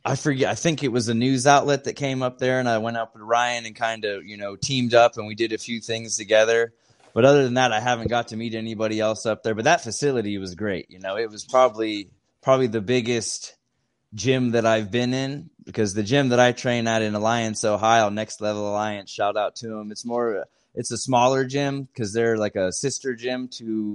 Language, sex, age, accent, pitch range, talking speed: English, male, 20-39, American, 105-120 Hz, 235 wpm